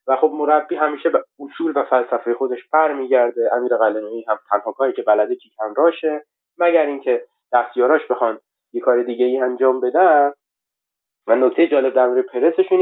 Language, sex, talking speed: Persian, male, 160 wpm